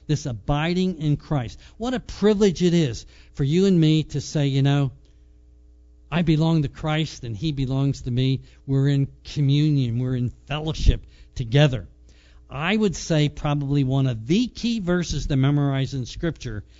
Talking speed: 165 wpm